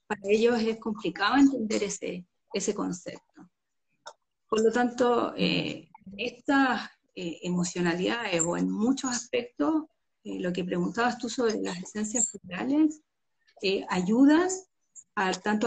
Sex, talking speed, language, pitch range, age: female, 125 wpm, Spanish, 200-255 Hz, 40-59